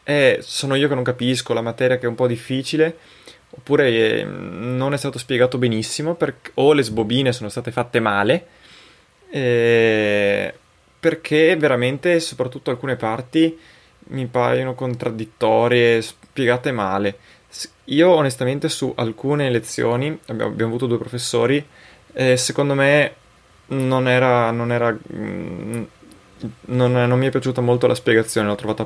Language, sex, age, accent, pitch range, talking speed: Italian, male, 20-39, native, 110-130 Hz, 140 wpm